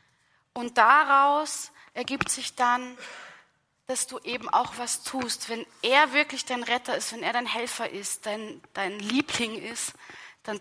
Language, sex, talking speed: German, female, 155 wpm